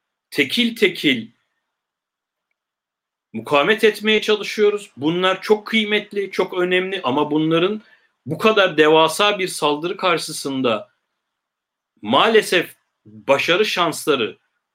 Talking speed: 85 wpm